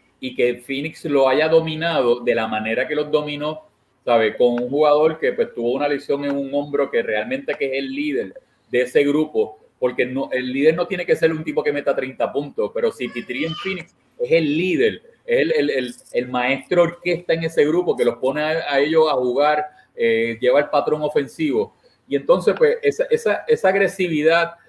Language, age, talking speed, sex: Spanish, 30-49, 205 wpm, male